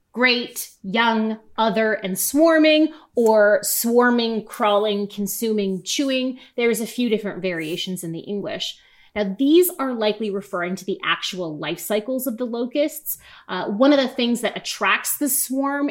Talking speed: 150 wpm